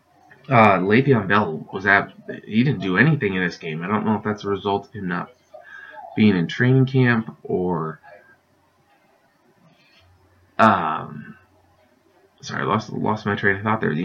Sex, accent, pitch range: male, American, 100-120 Hz